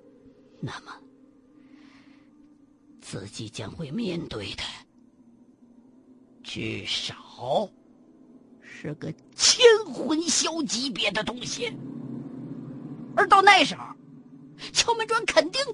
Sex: female